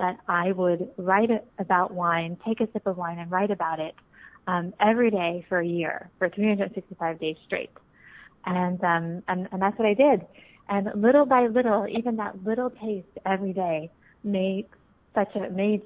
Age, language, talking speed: 30-49, English, 180 wpm